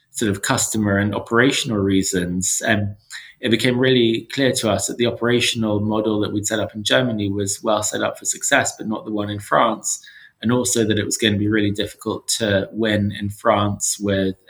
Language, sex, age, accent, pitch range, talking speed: English, male, 20-39, British, 100-115 Hz, 210 wpm